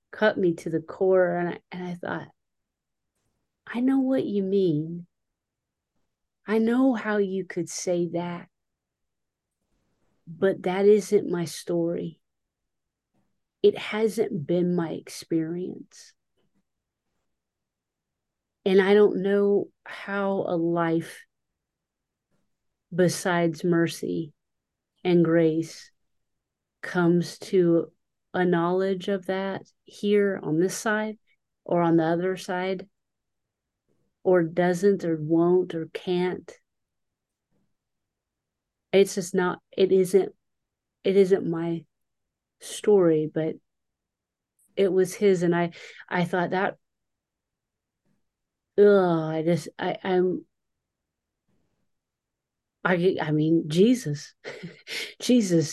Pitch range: 165-195 Hz